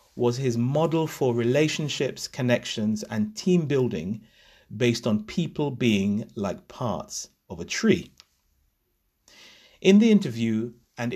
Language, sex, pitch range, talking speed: English, male, 105-160 Hz, 115 wpm